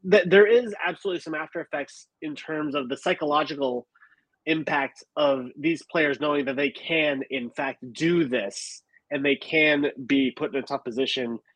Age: 30-49